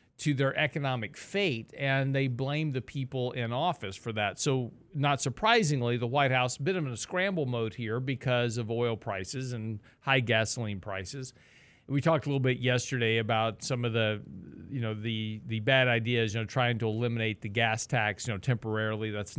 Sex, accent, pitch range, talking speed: male, American, 120-150 Hz, 195 wpm